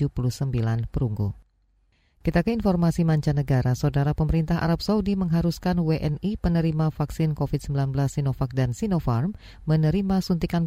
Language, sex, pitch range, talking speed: Indonesian, female, 135-165 Hz, 115 wpm